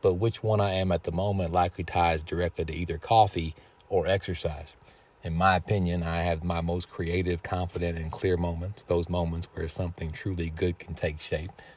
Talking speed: 190 wpm